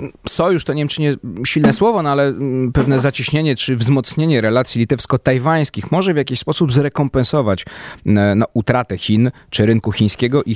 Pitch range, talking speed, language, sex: 100-125 Hz, 150 wpm, Polish, male